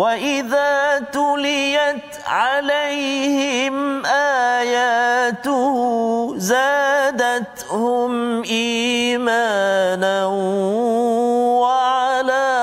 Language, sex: Malayalam, male